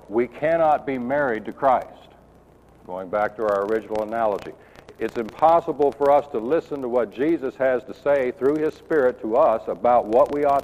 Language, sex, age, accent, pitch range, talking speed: English, male, 60-79, American, 105-150 Hz, 185 wpm